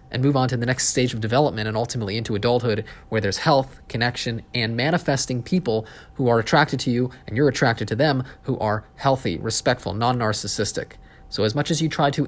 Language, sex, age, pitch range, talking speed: English, male, 30-49, 115-145 Hz, 205 wpm